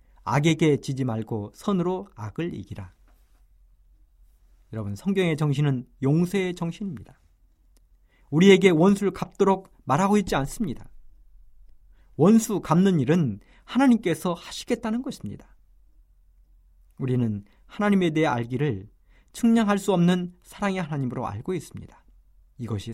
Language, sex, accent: Korean, male, native